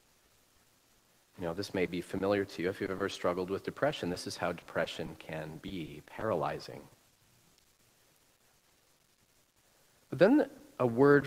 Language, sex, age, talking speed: English, male, 40-59, 135 wpm